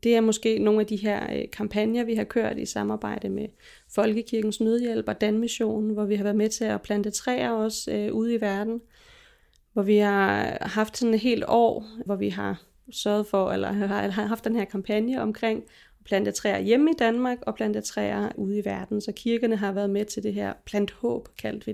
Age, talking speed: 30-49, 200 wpm